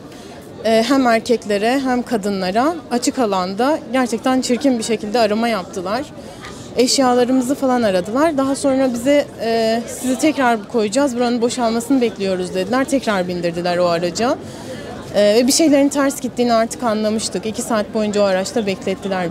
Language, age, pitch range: Turkish, 30-49, 220-260 Hz